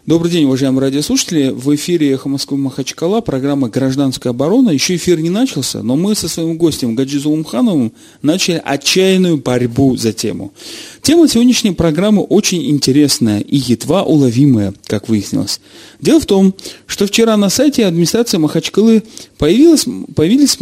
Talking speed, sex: 140 wpm, male